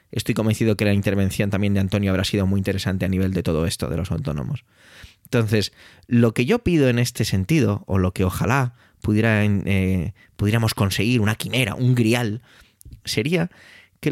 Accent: Spanish